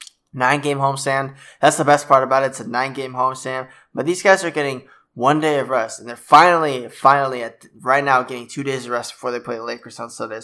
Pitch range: 120-140 Hz